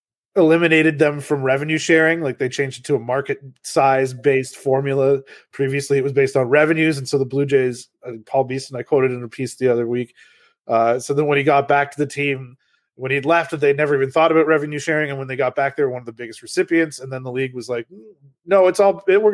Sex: male